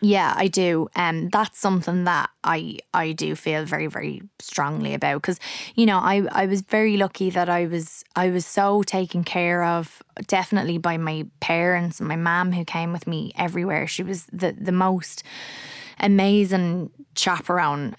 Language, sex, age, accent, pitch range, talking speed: English, female, 20-39, Irish, 170-190 Hz, 175 wpm